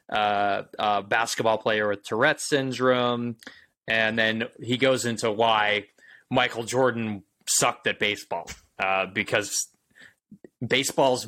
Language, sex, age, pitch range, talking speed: English, male, 20-39, 105-120 Hz, 110 wpm